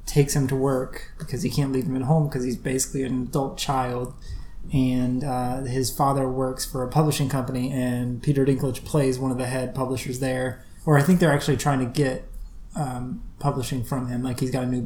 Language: English